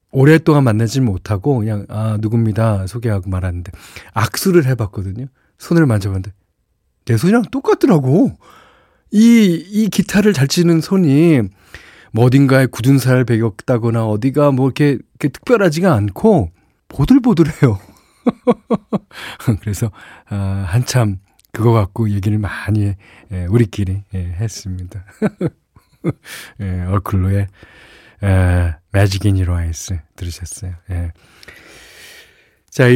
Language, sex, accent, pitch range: Korean, male, native, 100-155 Hz